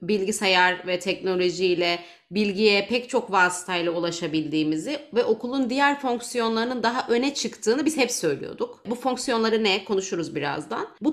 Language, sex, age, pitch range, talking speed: Turkish, female, 30-49, 190-235 Hz, 130 wpm